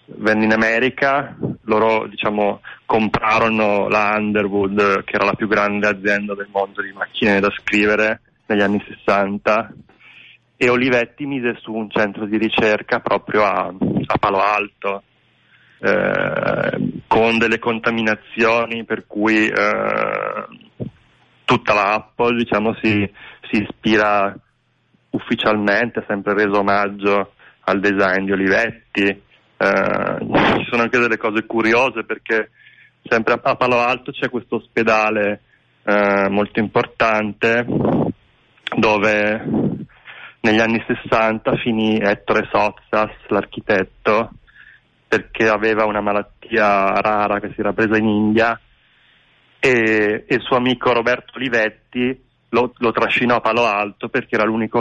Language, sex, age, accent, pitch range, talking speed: Italian, male, 30-49, native, 105-115 Hz, 120 wpm